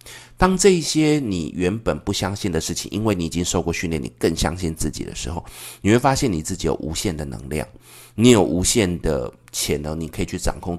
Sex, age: male, 30-49